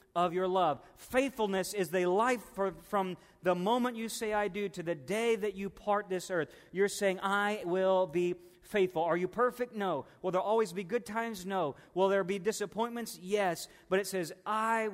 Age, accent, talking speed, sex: 40-59, American, 195 wpm, male